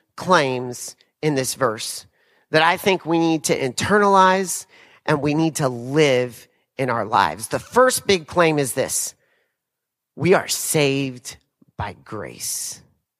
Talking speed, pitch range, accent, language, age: 135 wpm, 145-210 Hz, American, English, 40-59